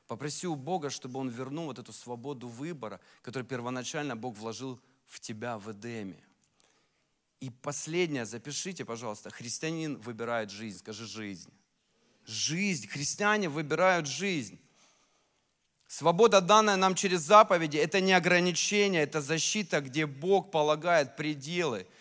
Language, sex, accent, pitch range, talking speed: Russian, male, native, 125-170 Hz, 125 wpm